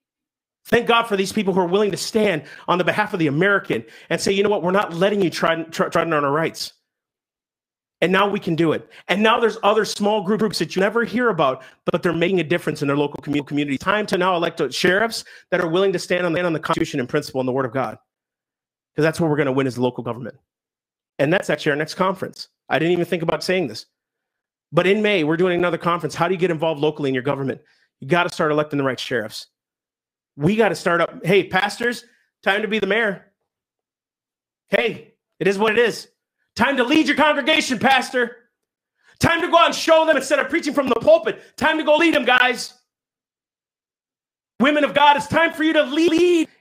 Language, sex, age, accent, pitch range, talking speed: English, male, 40-59, American, 170-275 Hz, 230 wpm